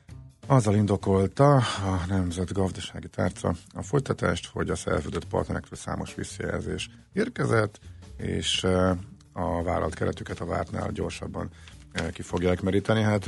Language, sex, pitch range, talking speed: Hungarian, male, 85-105 Hz, 115 wpm